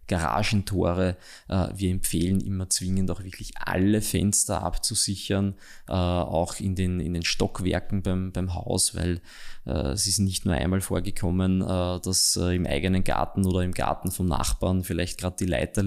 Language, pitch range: German, 90-100 Hz